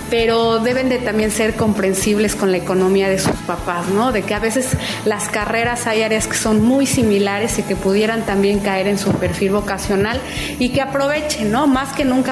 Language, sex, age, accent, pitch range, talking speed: Spanish, female, 30-49, Mexican, 190-225 Hz, 200 wpm